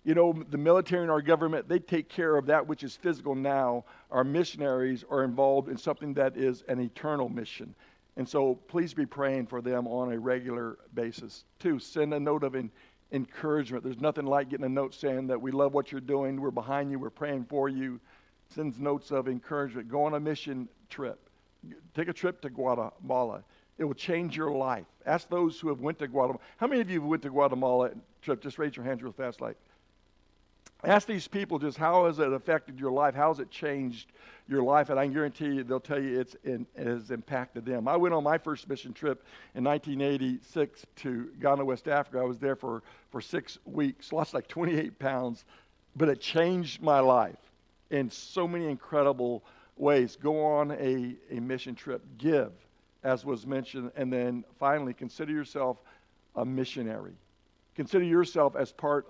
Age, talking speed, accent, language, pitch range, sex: 60-79, 190 wpm, American, English, 130-150 Hz, male